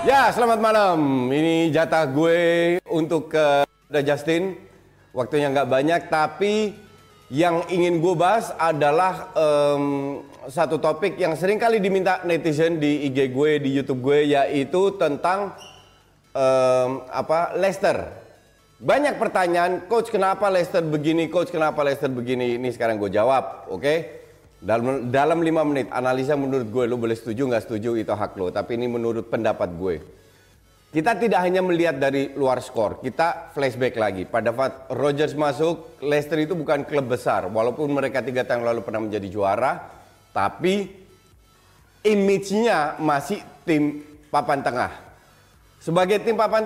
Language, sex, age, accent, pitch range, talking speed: Indonesian, male, 30-49, native, 135-180 Hz, 140 wpm